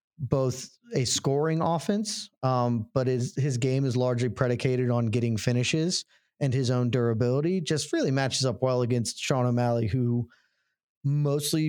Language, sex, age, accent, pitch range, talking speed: English, male, 30-49, American, 125-155 Hz, 150 wpm